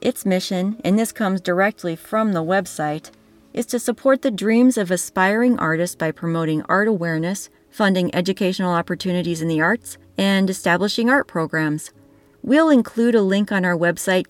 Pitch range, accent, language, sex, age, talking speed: 160-210 Hz, American, English, female, 30-49, 160 wpm